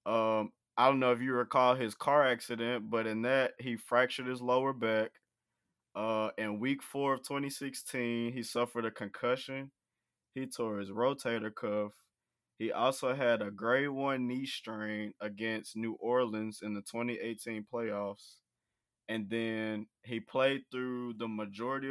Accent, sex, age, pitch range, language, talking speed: American, male, 20-39, 110-130 Hz, English, 150 wpm